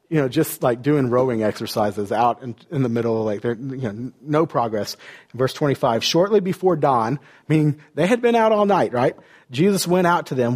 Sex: male